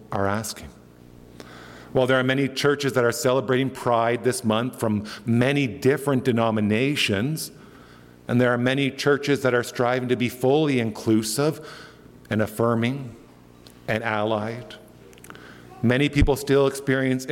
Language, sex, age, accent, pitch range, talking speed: English, male, 50-69, American, 105-135 Hz, 130 wpm